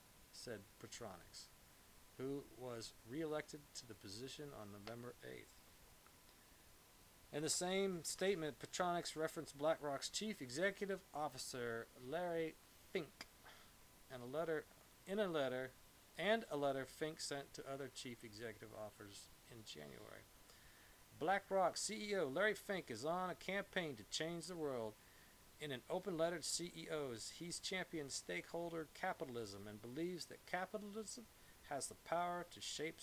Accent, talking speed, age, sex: American, 130 wpm, 40-59, male